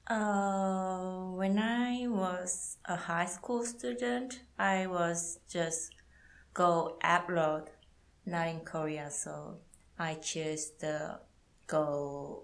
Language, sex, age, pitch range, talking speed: English, female, 20-39, 155-190 Hz, 100 wpm